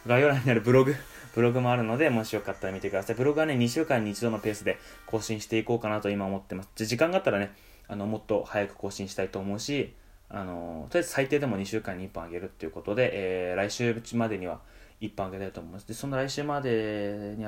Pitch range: 100-130 Hz